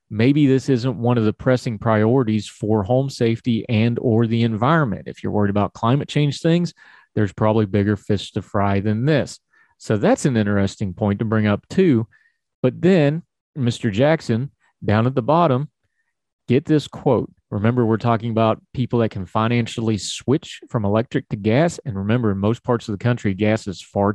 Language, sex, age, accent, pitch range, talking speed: English, male, 30-49, American, 105-130 Hz, 185 wpm